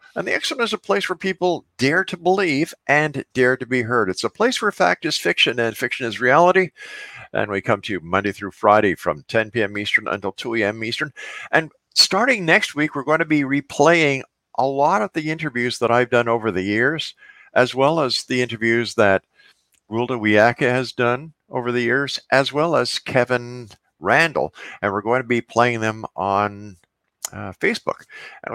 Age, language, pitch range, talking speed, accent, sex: 50-69, English, 110-150 Hz, 195 wpm, American, male